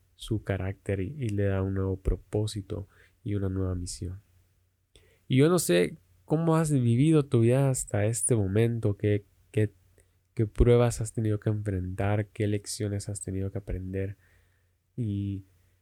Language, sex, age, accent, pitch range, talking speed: Spanish, male, 20-39, Mexican, 95-105 Hz, 150 wpm